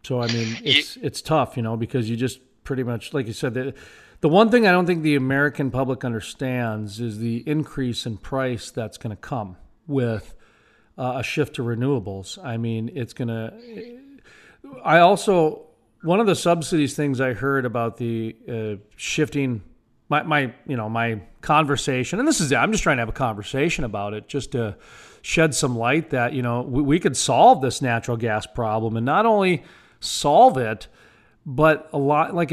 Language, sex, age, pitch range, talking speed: English, male, 40-59, 120-160 Hz, 190 wpm